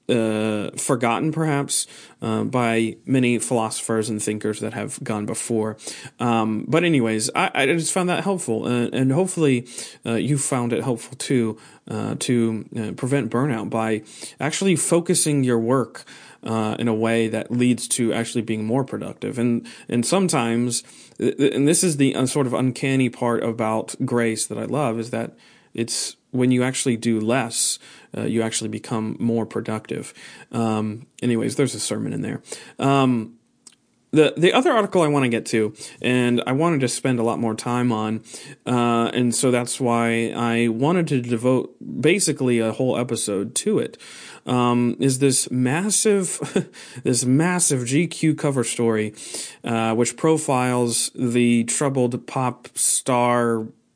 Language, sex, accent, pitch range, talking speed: English, male, American, 115-135 Hz, 155 wpm